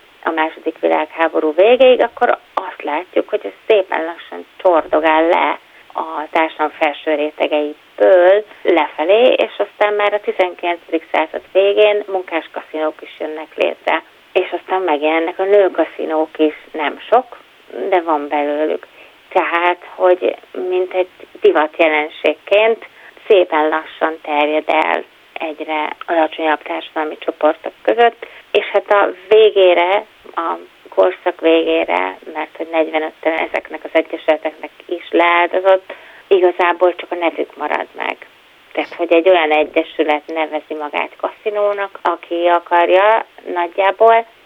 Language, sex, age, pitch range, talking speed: Hungarian, female, 30-49, 155-190 Hz, 115 wpm